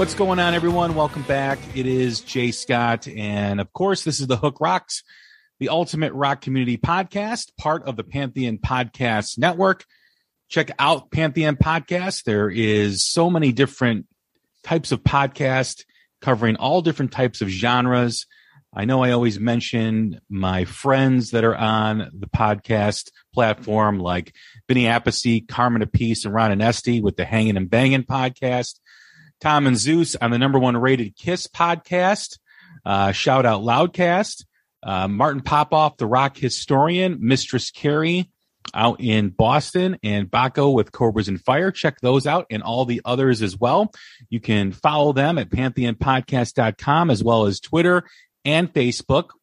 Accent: American